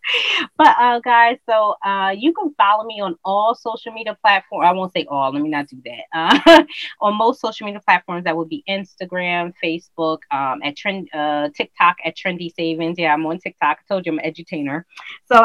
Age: 30-49